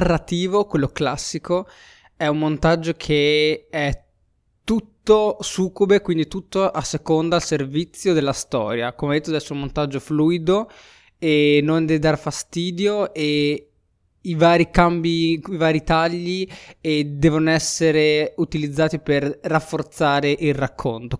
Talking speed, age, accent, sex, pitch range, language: 125 wpm, 20-39, native, male, 140-165 Hz, Italian